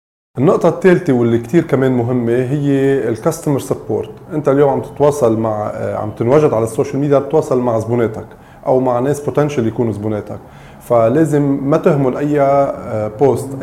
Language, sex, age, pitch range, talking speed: English, male, 30-49, 115-140 Hz, 145 wpm